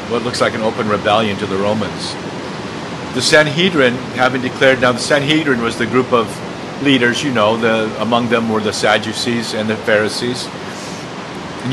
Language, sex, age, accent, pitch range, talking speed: English, male, 50-69, American, 110-135 Hz, 165 wpm